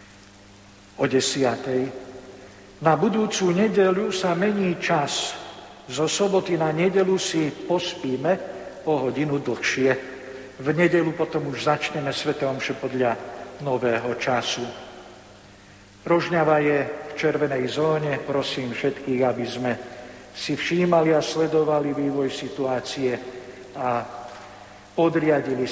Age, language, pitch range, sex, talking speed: 60-79, Slovak, 125-165 Hz, male, 100 wpm